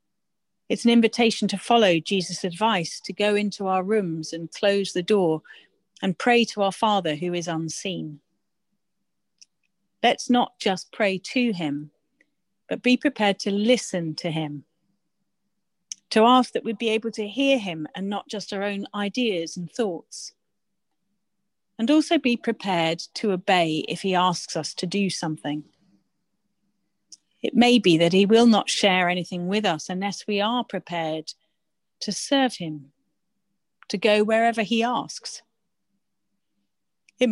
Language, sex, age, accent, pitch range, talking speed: English, female, 40-59, British, 175-230 Hz, 145 wpm